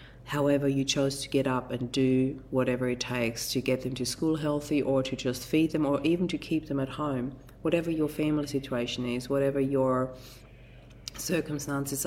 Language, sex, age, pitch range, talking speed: English, female, 40-59, 130-150 Hz, 185 wpm